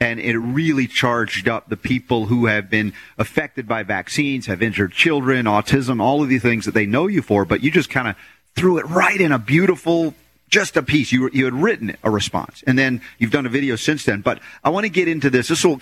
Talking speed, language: 240 wpm, English